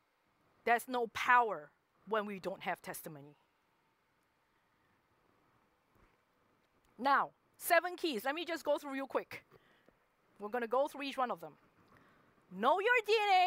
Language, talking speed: English, 130 wpm